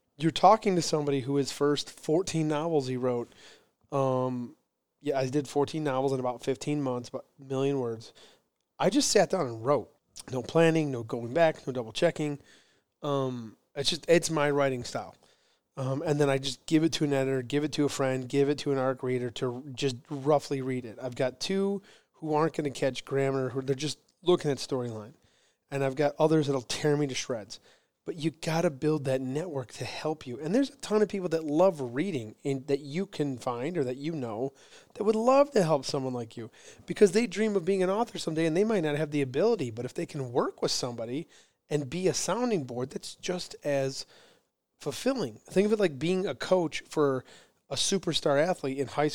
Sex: male